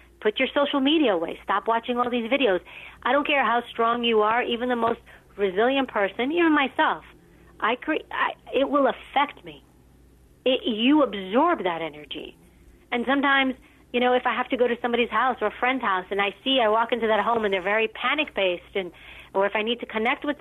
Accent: American